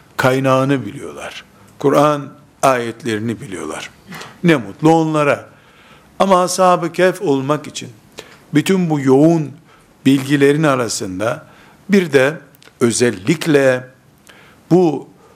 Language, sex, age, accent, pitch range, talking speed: Turkish, male, 60-79, native, 125-160 Hz, 85 wpm